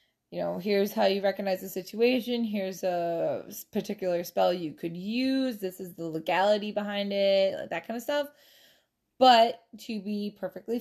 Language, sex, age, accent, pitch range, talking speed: English, female, 20-39, American, 185-230 Hz, 155 wpm